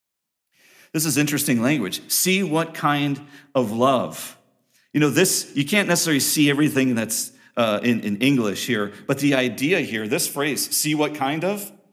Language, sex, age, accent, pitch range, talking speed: English, male, 40-59, American, 120-155 Hz, 165 wpm